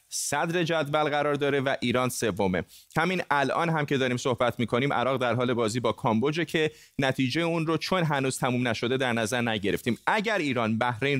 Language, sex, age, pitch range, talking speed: Persian, male, 30-49, 120-155 Hz, 190 wpm